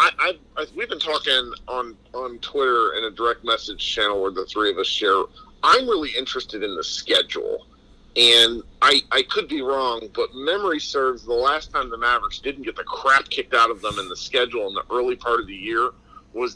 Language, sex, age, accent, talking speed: English, male, 40-59, American, 215 wpm